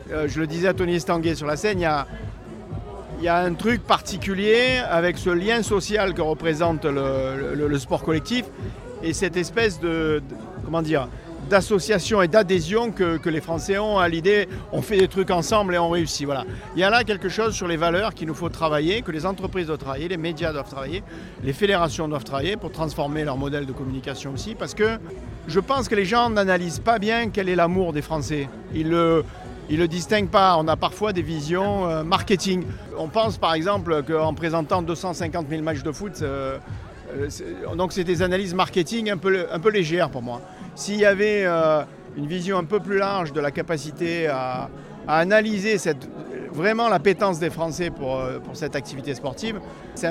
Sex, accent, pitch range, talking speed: male, French, 150-190 Hz, 200 wpm